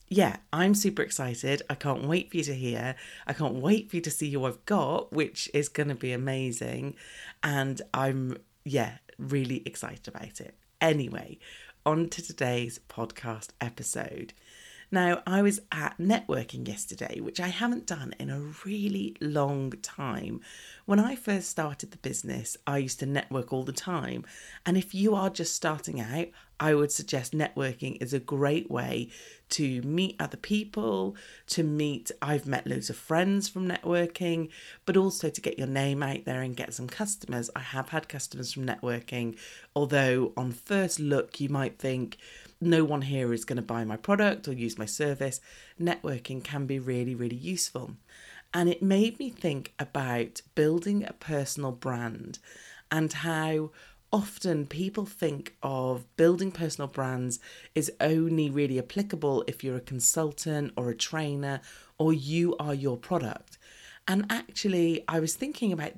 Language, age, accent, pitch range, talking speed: English, 40-59, British, 130-175 Hz, 165 wpm